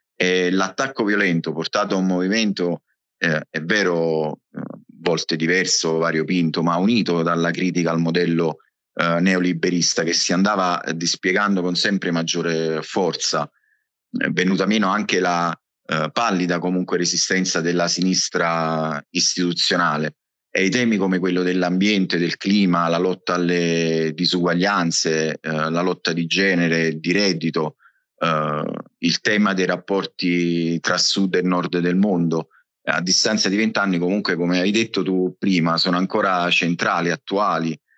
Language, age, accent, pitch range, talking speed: Italian, 30-49, native, 85-95 Hz, 135 wpm